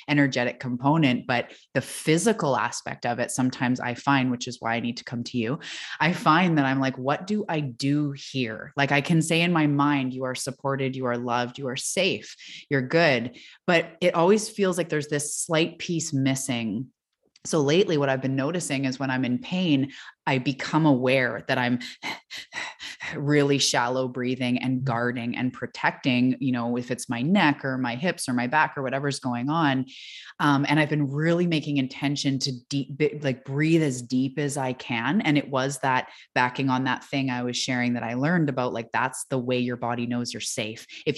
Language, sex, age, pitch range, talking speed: English, female, 20-39, 125-150 Hz, 200 wpm